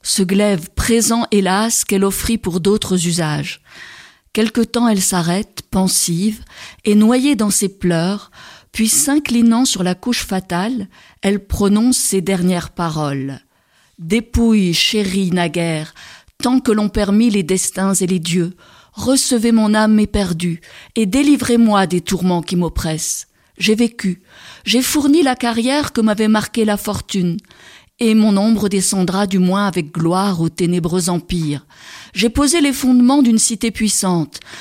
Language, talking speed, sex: French, 140 wpm, female